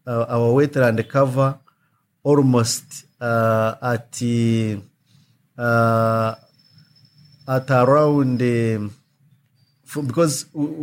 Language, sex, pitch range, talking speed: English, male, 115-140 Hz, 65 wpm